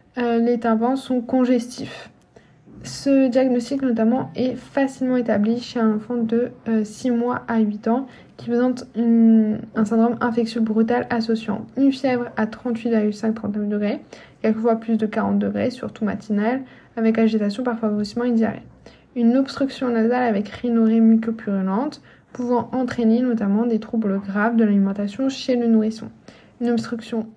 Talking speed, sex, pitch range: 145 wpm, female, 220-245 Hz